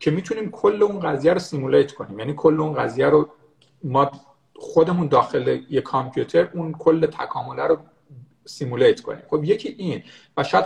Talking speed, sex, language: 165 wpm, male, Persian